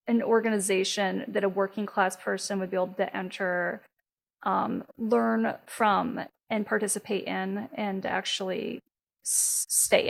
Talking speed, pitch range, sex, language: 130 wpm, 215-270 Hz, female, English